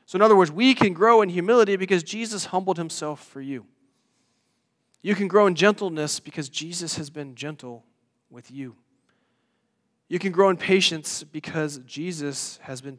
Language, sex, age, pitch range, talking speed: English, male, 30-49, 145-190 Hz, 165 wpm